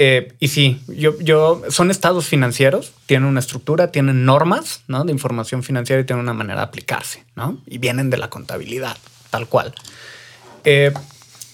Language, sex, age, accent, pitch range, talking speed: Spanish, male, 20-39, Mexican, 130-170 Hz, 165 wpm